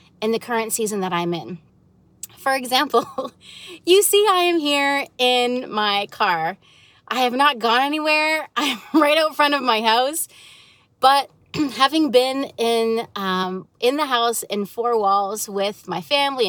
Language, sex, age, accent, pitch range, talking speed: English, female, 30-49, American, 215-280 Hz, 155 wpm